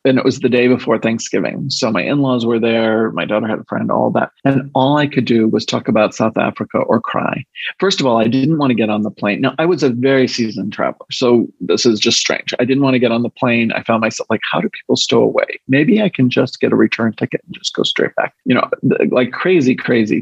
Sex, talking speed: male, 265 wpm